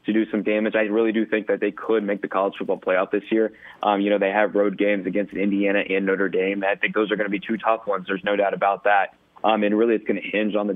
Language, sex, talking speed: English, male, 295 wpm